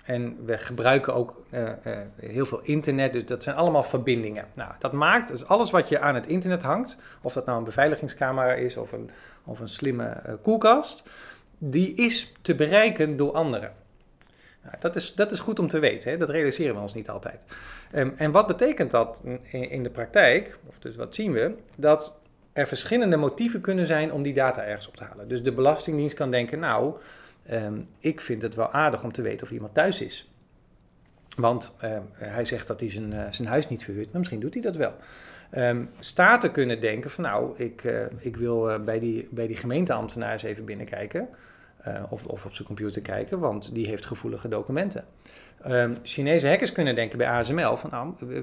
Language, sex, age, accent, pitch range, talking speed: Dutch, male, 40-59, Dutch, 115-155 Hz, 195 wpm